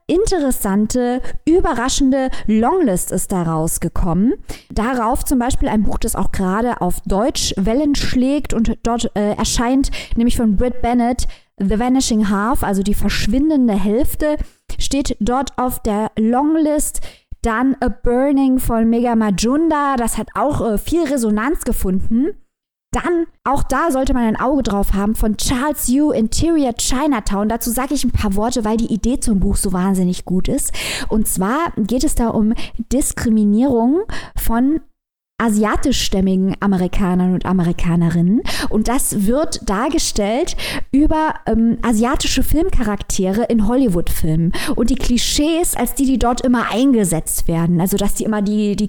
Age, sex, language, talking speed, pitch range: 20-39, female, German, 145 wpm, 205-265 Hz